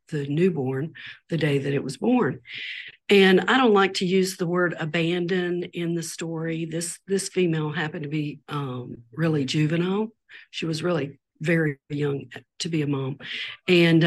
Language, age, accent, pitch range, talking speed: English, 50-69, American, 150-190 Hz, 165 wpm